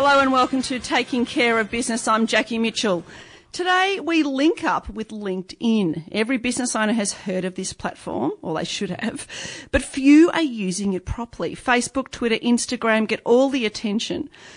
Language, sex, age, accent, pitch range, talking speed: English, female, 40-59, Australian, 195-265 Hz, 175 wpm